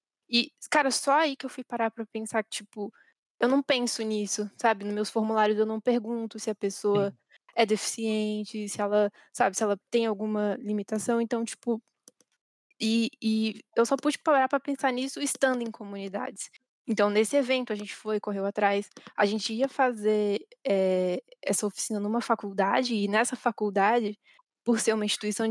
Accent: Brazilian